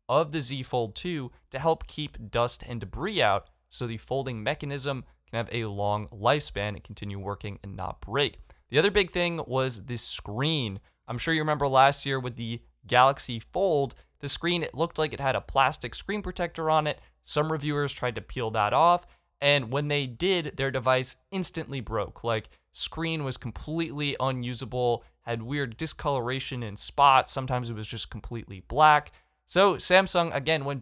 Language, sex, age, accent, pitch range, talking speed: English, male, 20-39, American, 115-150 Hz, 180 wpm